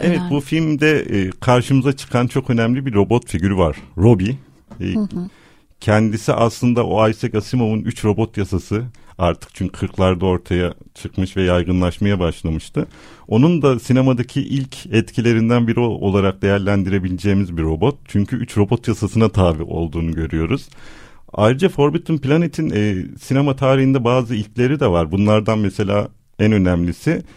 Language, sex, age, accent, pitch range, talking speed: Turkish, male, 50-69, native, 95-130 Hz, 125 wpm